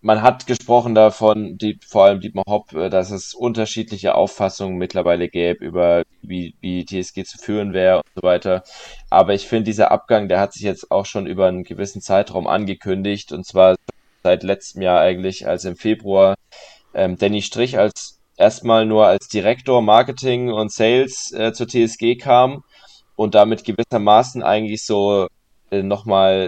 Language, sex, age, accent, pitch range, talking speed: German, male, 10-29, German, 95-115 Hz, 165 wpm